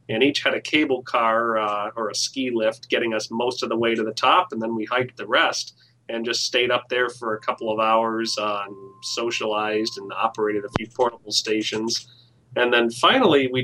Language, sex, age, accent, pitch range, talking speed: English, male, 30-49, American, 110-125 Hz, 215 wpm